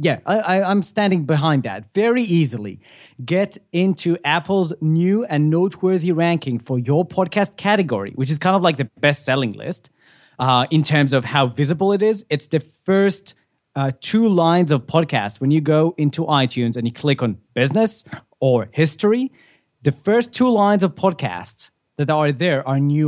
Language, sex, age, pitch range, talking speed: English, male, 20-39, 135-185 Hz, 170 wpm